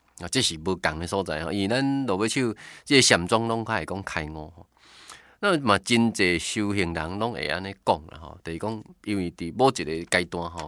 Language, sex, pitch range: Chinese, male, 85-125 Hz